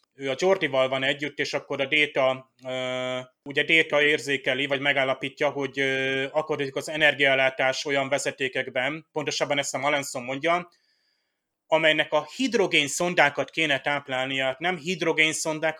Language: Hungarian